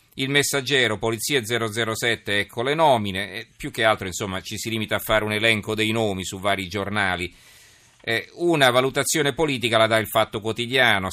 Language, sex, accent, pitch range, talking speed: Italian, male, native, 95-120 Hz, 180 wpm